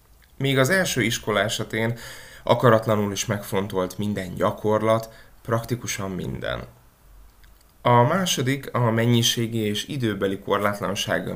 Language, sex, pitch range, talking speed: Hungarian, male, 100-120 Hz, 100 wpm